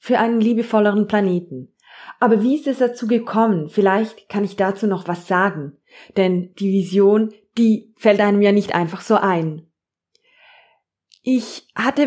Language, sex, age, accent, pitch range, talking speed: German, female, 20-39, German, 185-235 Hz, 150 wpm